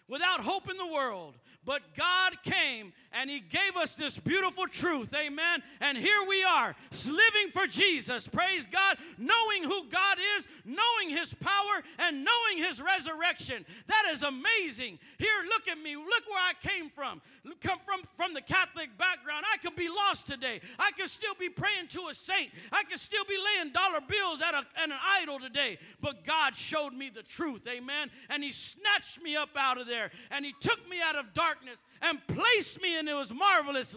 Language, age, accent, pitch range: English, 50-69, American, 265-370 Hz